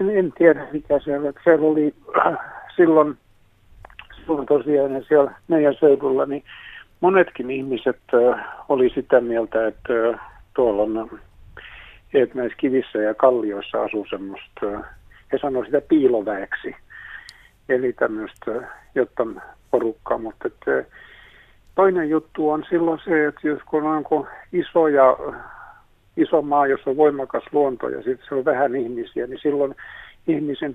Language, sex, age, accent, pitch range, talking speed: Finnish, male, 60-79, native, 115-160 Hz, 135 wpm